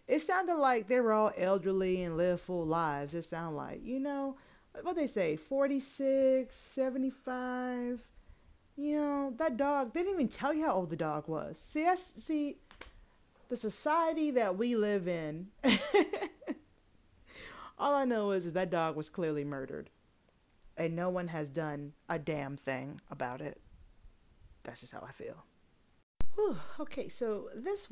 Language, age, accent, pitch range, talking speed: English, 30-49, American, 165-250 Hz, 155 wpm